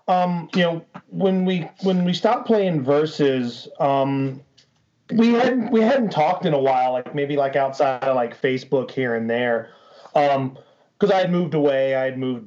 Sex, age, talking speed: male, 30-49, 185 wpm